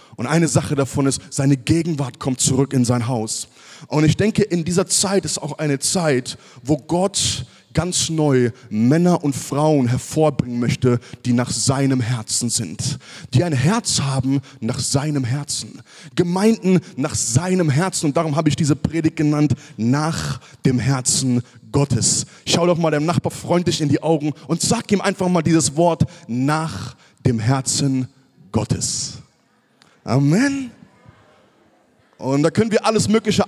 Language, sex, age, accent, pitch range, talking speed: German, male, 30-49, German, 135-185 Hz, 150 wpm